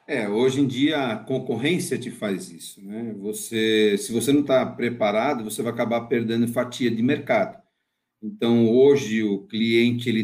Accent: Brazilian